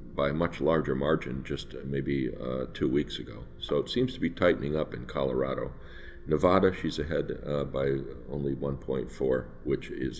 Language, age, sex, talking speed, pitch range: English, 50-69, male, 170 wpm, 65-85 Hz